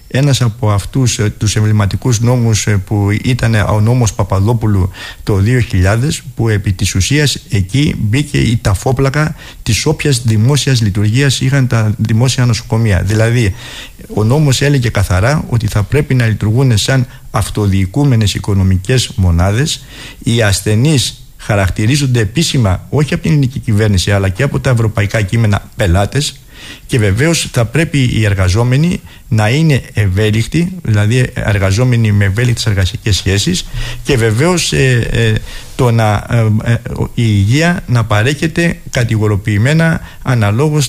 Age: 50-69